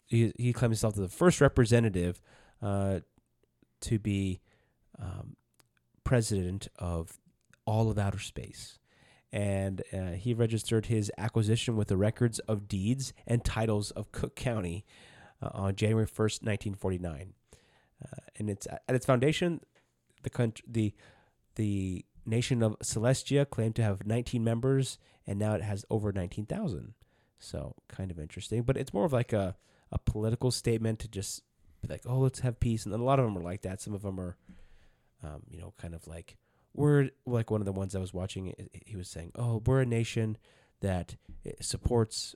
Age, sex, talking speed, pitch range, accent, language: 30-49, male, 175 wpm, 95-120 Hz, American, English